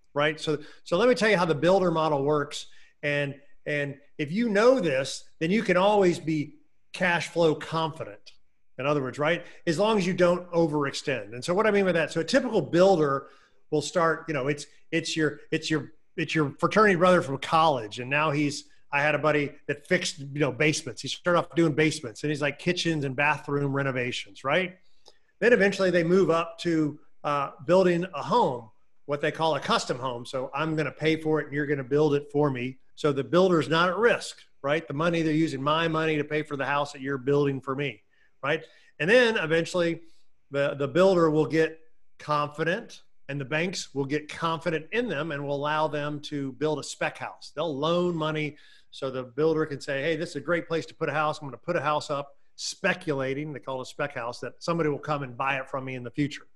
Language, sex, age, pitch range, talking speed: English, male, 40-59, 145-170 Hz, 220 wpm